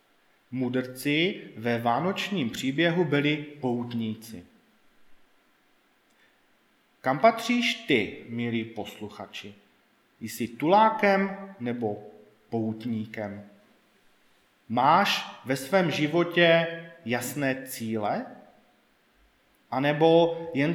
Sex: male